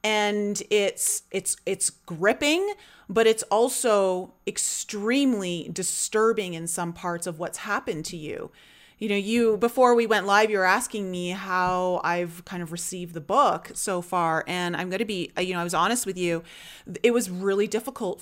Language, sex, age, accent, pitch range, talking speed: English, female, 30-49, American, 180-230 Hz, 180 wpm